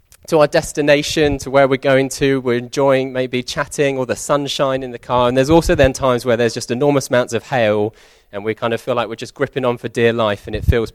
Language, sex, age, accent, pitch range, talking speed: English, male, 20-39, British, 115-145 Hz, 250 wpm